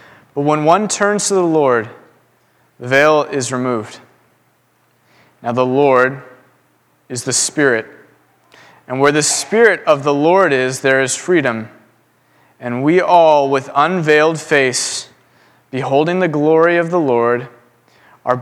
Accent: American